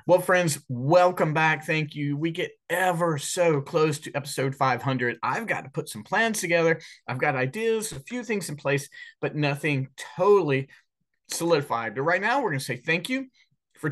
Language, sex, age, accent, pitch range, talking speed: English, male, 30-49, American, 140-190 Hz, 180 wpm